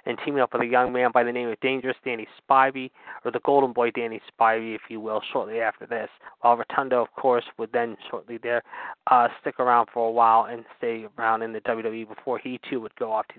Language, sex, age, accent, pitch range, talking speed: English, male, 20-39, American, 115-135 Hz, 240 wpm